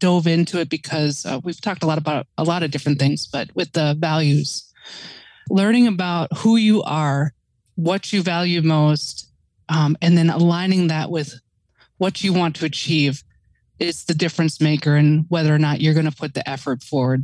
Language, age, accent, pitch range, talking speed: English, 20-39, American, 145-175 Hz, 190 wpm